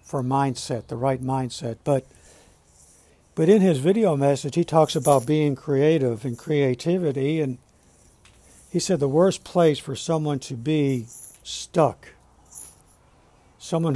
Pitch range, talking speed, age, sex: 130-155 Hz, 130 wpm, 60-79, male